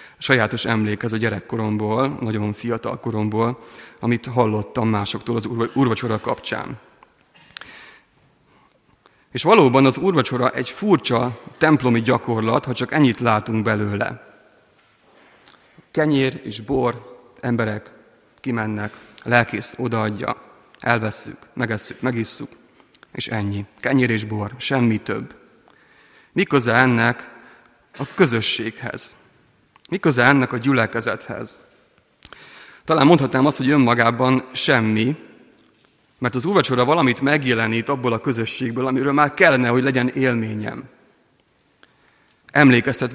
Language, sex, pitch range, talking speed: Hungarian, male, 115-130 Hz, 100 wpm